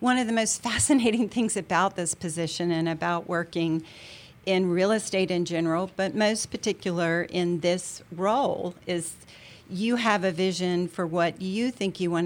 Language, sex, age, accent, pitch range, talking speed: English, female, 50-69, American, 170-200 Hz, 165 wpm